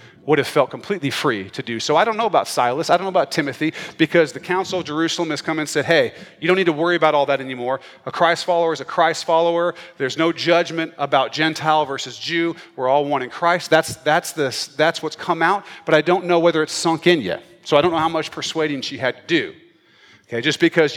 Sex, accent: male, American